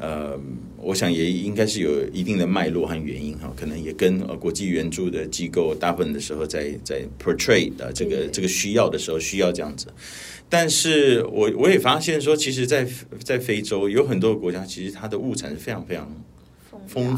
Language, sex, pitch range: Chinese, male, 85-135 Hz